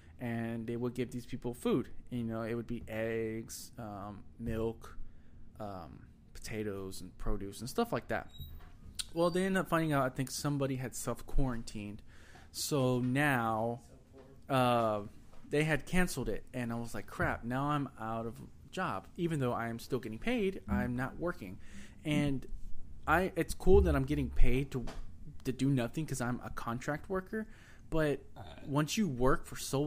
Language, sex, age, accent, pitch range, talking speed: English, male, 20-39, American, 110-135 Hz, 170 wpm